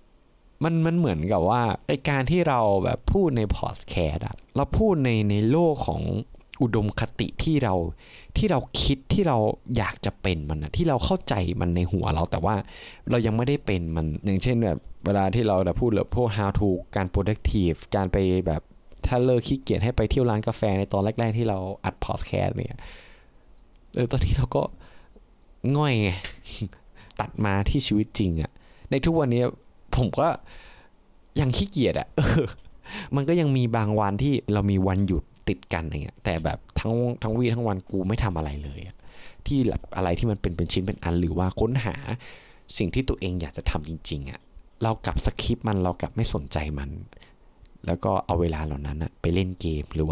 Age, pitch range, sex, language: 20-39, 85-115 Hz, male, Thai